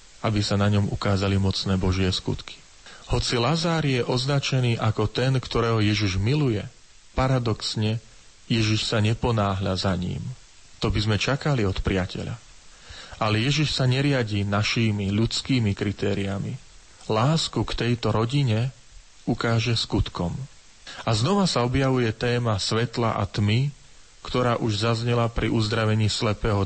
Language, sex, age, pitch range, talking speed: Slovak, male, 40-59, 105-130 Hz, 125 wpm